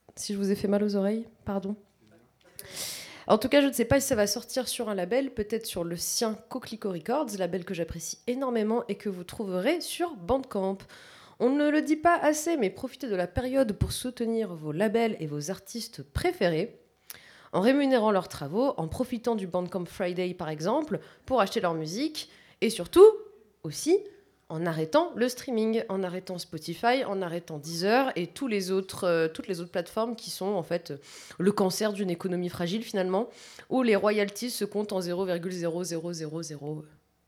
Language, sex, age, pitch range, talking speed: French, female, 20-39, 175-240 Hz, 180 wpm